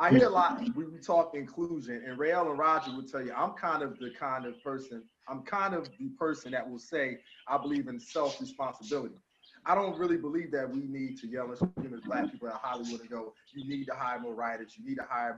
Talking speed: 245 wpm